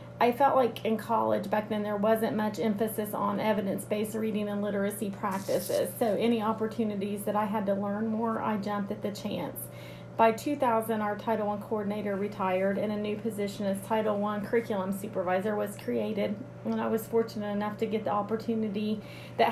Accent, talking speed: American, 180 wpm